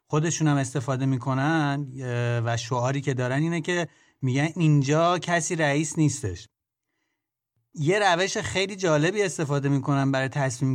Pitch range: 130-155 Hz